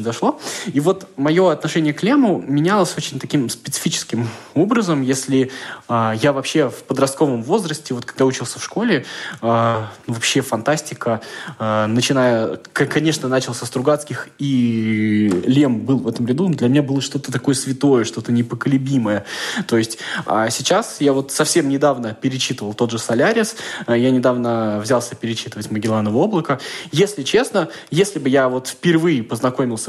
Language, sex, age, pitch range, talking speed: Russian, male, 20-39, 120-150 Hz, 150 wpm